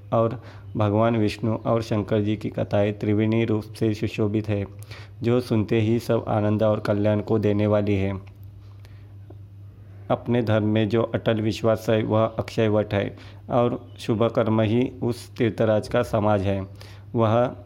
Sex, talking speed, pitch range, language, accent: male, 155 wpm, 105-115 Hz, Hindi, native